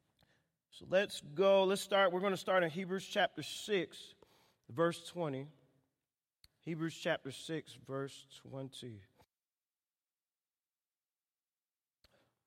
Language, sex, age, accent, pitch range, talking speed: English, male, 40-59, American, 155-205 Hz, 95 wpm